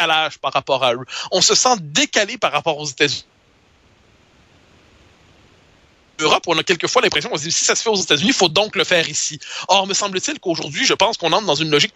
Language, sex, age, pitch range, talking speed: French, male, 30-49, 160-215 Hz, 230 wpm